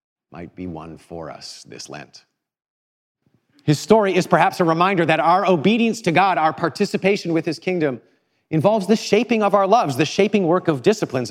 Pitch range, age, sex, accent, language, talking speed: 95-150 Hz, 40-59, male, American, English, 180 wpm